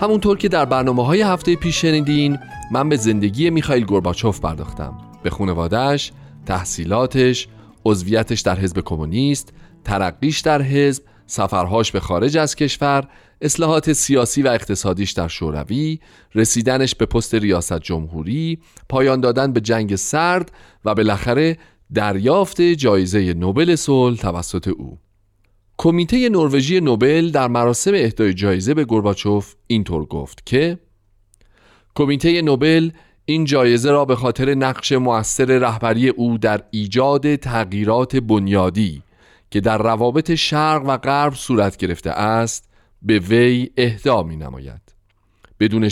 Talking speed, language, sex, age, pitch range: 125 wpm, Persian, male, 40-59, 100-145 Hz